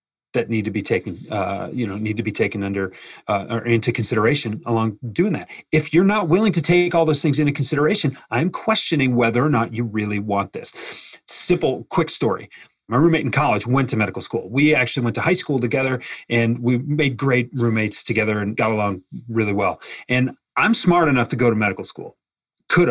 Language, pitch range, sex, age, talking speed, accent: English, 115-160 Hz, male, 30-49, 205 wpm, American